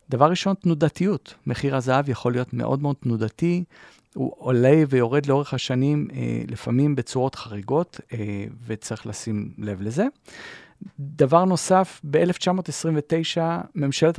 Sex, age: male, 40-59